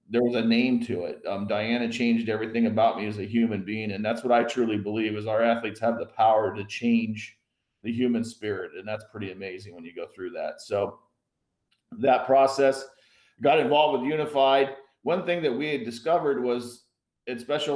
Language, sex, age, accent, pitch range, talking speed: English, male, 40-59, American, 110-135 Hz, 195 wpm